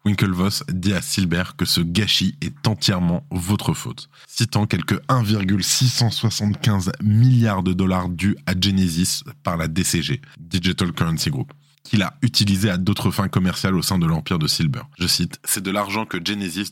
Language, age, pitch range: French, 20-39, 90-110 Hz